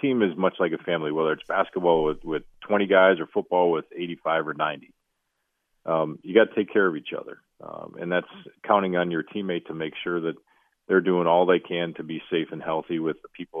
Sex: male